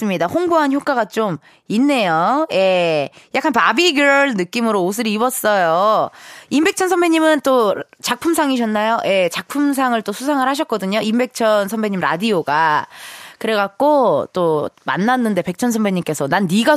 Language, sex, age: Korean, female, 20-39